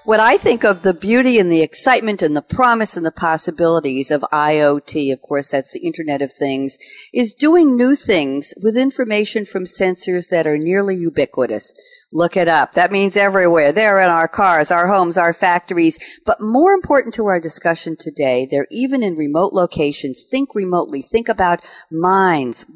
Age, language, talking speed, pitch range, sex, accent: 50-69, English, 175 wpm, 160-220 Hz, female, American